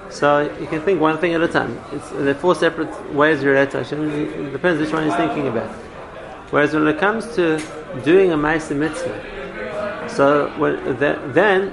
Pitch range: 135-160 Hz